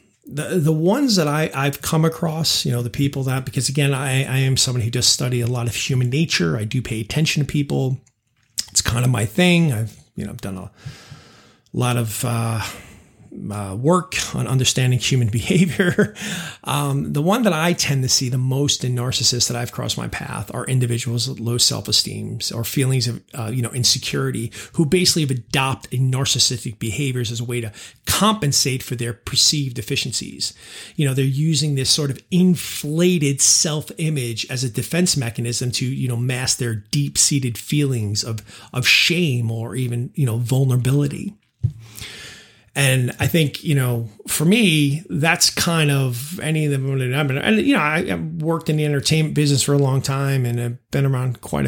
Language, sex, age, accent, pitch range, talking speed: English, male, 30-49, American, 120-150 Hz, 180 wpm